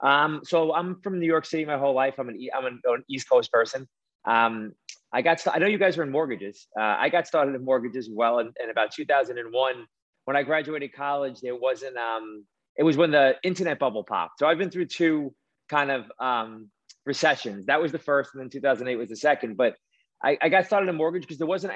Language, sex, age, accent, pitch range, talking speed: English, male, 30-49, American, 130-160 Hz, 230 wpm